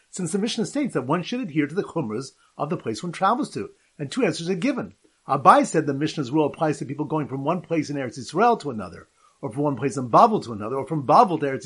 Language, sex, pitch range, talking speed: English, male, 150-215 Hz, 270 wpm